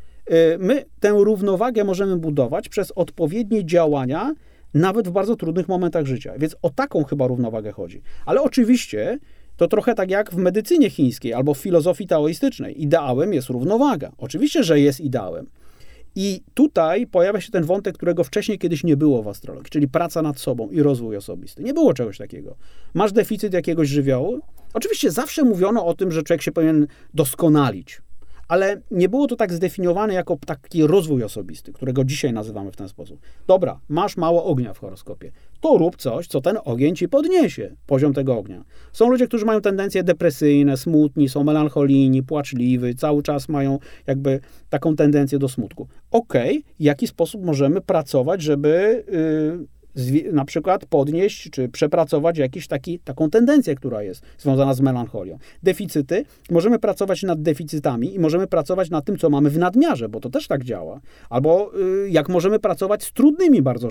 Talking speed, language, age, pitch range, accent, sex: 165 wpm, Polish, 30-49, 140-195 Hz, native, male